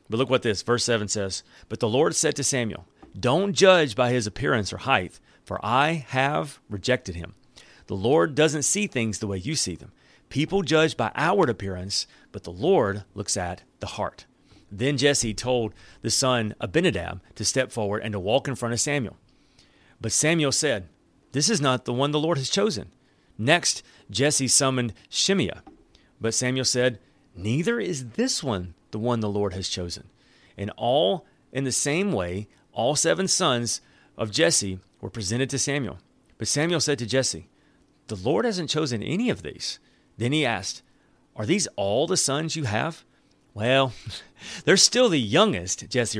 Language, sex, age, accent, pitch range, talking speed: English, male, 40-59, American, 105-150 Hz, 175 wpm